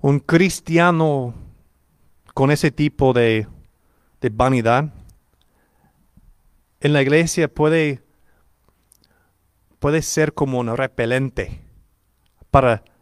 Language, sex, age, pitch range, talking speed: English, male, 40-59, 115-145 Hz, 85 wpm